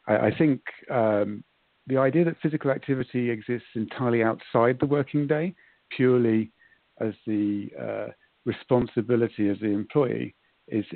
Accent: British